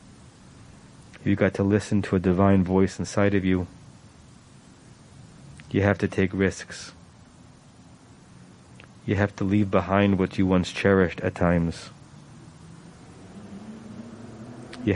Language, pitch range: English, 95-115 Hz